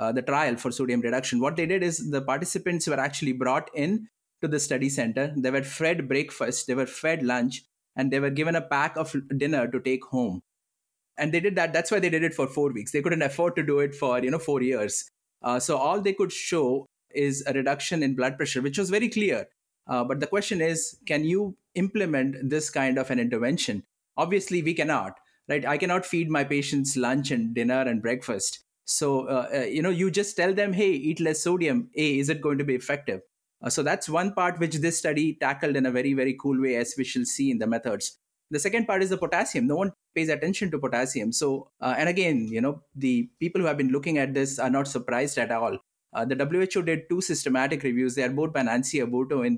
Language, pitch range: English, 130-170 Hz